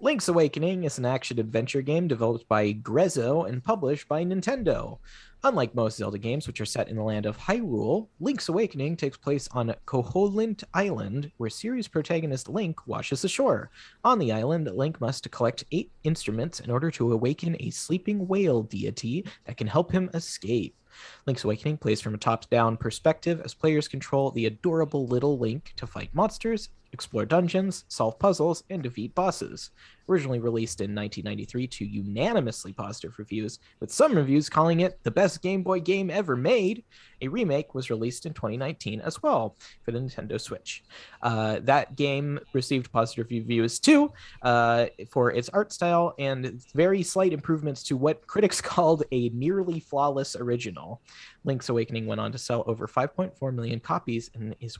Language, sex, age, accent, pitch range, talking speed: English, male, 30-49, American, 115-170 Hz, 165 wpm